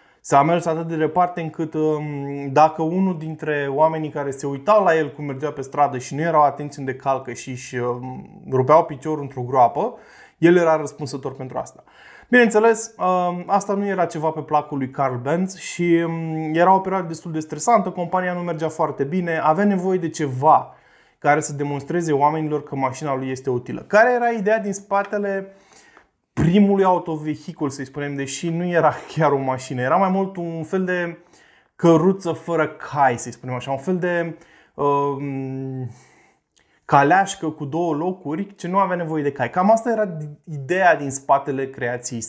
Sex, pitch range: male, 140-180 Hz